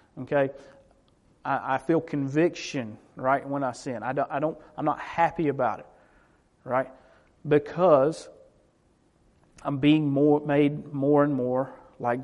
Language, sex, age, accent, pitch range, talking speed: English, male, 40-59, American, 135-155 Hz, 135 wpm